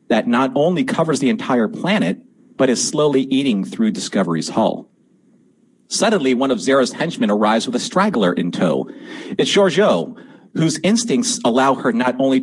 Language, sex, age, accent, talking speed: English, male, 40-59, American, 160 wpm